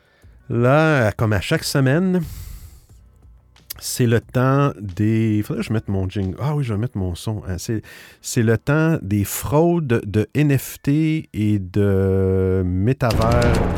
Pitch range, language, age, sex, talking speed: 95-125 Hz, French, 50-69, male, 145 wpm